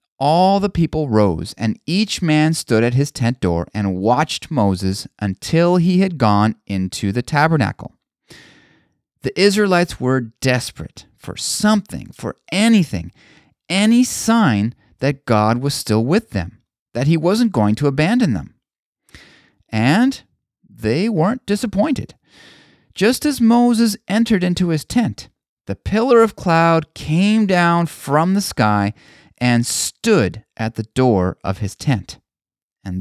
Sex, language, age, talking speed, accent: male, English, 30-49, 135 wpm, American